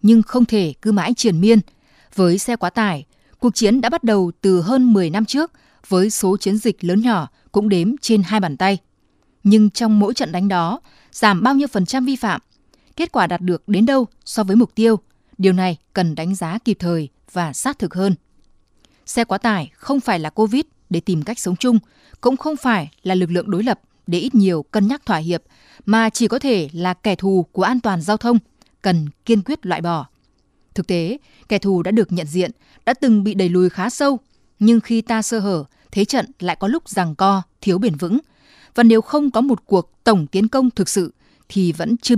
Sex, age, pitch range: female, 20-39, 180-235 Hz